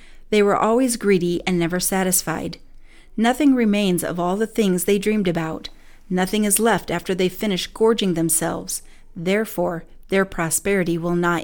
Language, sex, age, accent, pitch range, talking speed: English, female, 40-59, American, 175-215 Hz, 150 wpm